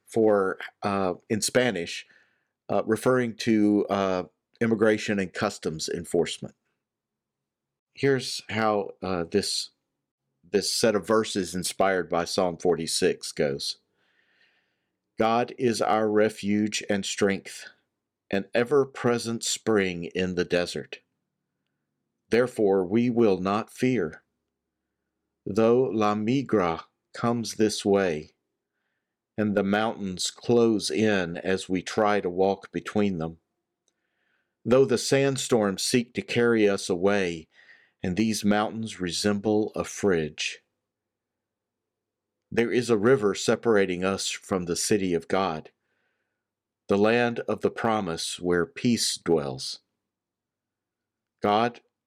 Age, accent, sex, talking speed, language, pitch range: 50-69, American, male, 110 wpm, English, 95-115 Hz